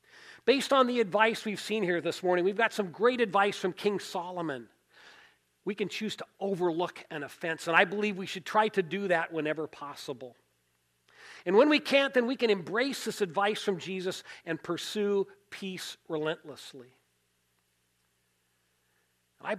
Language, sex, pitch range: English, male, 125-205 Hz